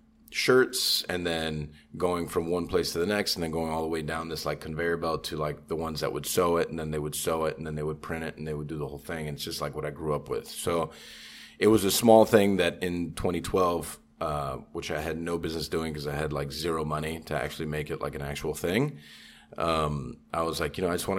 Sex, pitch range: male, 75-90 Hz